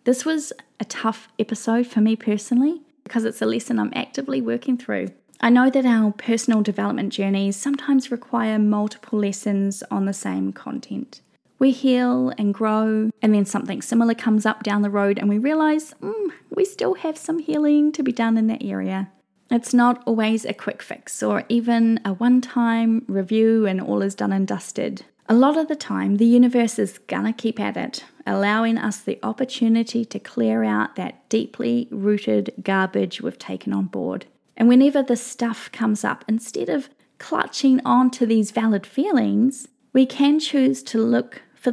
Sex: female